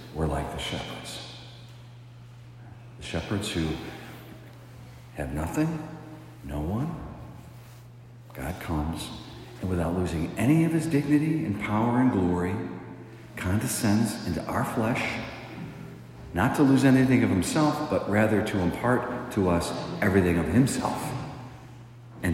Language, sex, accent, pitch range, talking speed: English, male, American, 85-120 Hz, 120 wpm